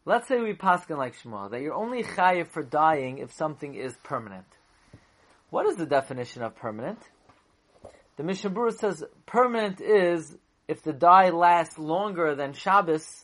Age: 30-49